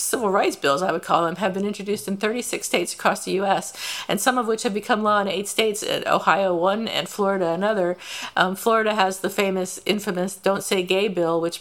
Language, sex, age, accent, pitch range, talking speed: English, female, 50-69, American, 190-225 Hz, 215 wpm